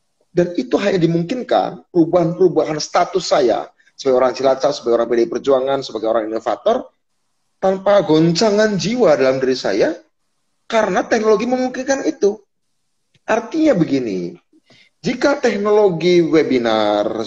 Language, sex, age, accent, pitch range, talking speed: Indonesian, male, 30-49, native, 130-210 Hz, 110 wpm